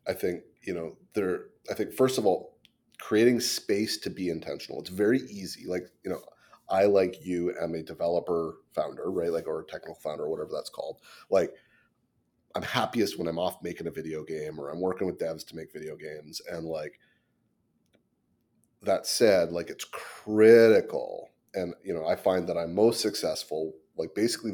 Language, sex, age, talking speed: English, male, 30-49, 185 wpm